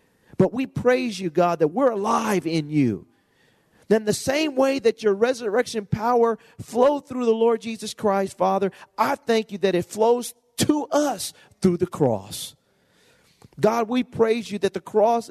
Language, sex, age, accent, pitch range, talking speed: English, male, 40-59, American, 160-240 Hz, 170 wpm